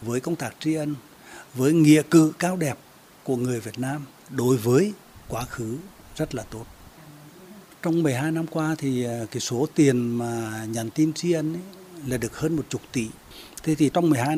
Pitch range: 120-155 Hz